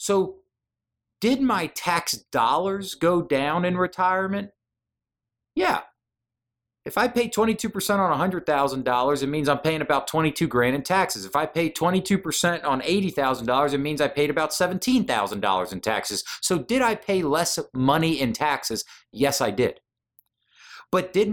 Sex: male